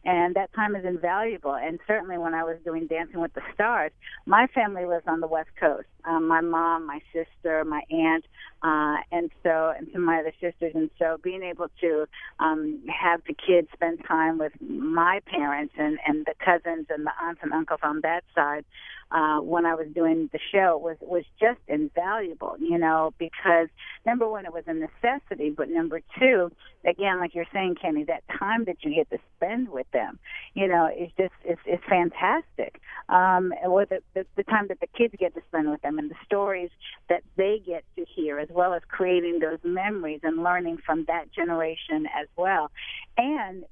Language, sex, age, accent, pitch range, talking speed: English, female, 50-69, American, 160-195 Hz, 200 wpm